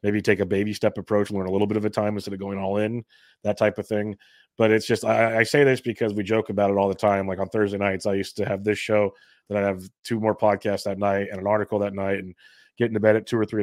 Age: 30-49